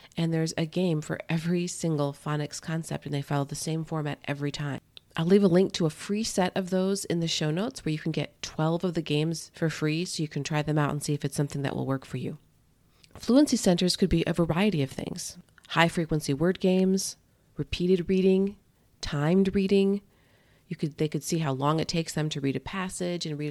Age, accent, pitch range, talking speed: 40-59, American, 150-185 Hz, 220 wpm